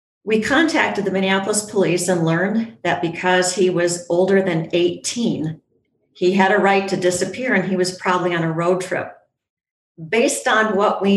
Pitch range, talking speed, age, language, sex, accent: 170-200 Hz, 170 wpm, 50-69, English, female, American